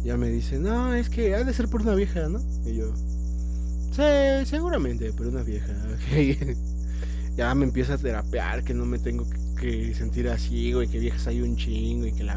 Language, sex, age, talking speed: Spanish, male, 20-39, 210 wpm